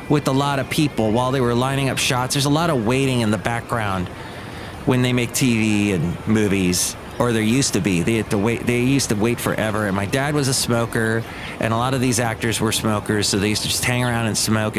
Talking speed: 240 wpm